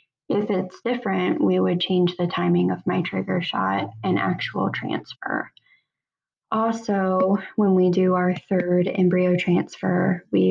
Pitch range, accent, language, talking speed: 175-205 Hz, American, English, 135 wpm